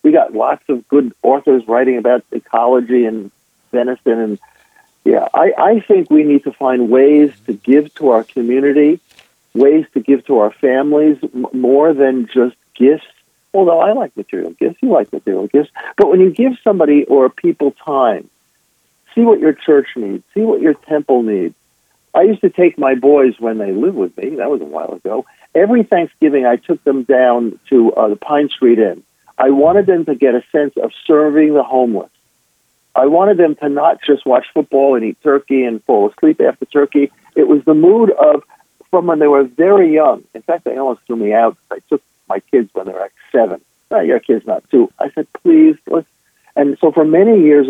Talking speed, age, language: 200 wpm, 50-69, English